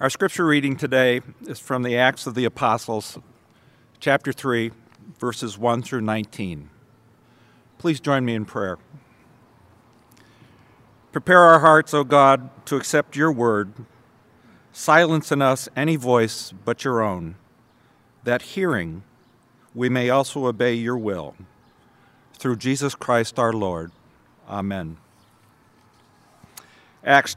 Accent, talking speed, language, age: American, 120 wpm, English, 50-69